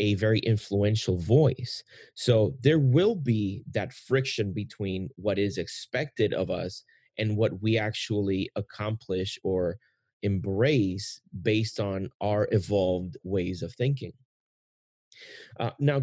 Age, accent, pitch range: 30-49, American, 100-125 Hz